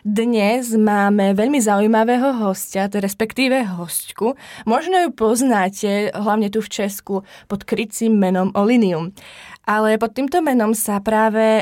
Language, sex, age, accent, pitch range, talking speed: Czech, female, 20-39, native, 195-235 Hz, 125 wpm